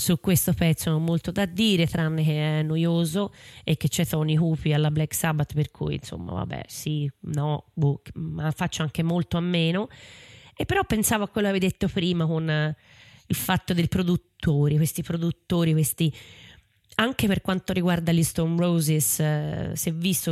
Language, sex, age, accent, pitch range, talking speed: Italian, female, 20-39, native, 155-185 Hz, 185 wpm